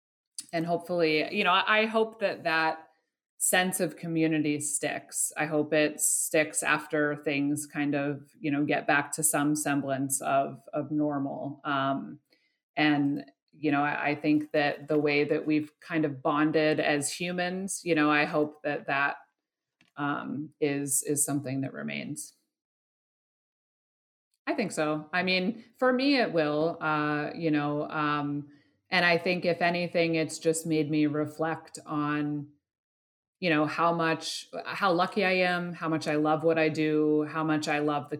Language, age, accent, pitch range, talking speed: English, 30-49, American, 145-165 Hz, 160 wpm